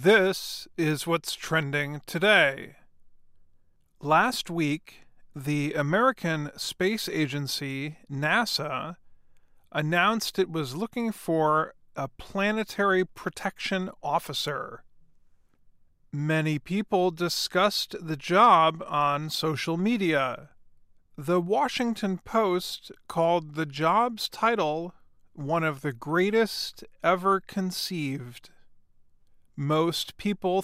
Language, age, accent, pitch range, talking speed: English, 40-59, American, 150-195 Hz, 85 wpm